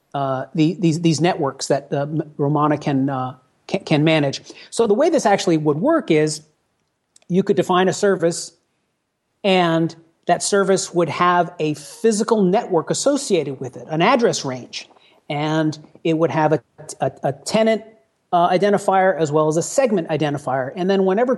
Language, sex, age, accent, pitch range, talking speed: English, male, 40-59, American, 160-210 Hz, 165 wpm